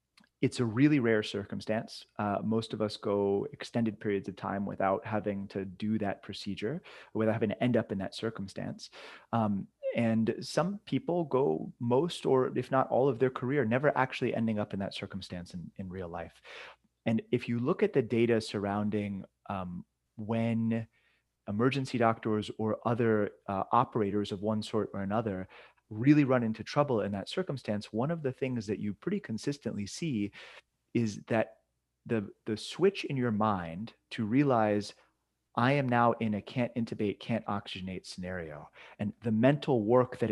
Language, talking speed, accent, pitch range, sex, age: English, 170 wpm, American, 105-125 Hz, male, 30-49